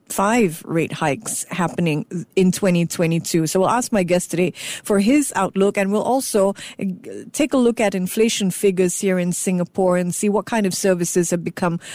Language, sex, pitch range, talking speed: English, female, 185-235 Hz, 175 wpm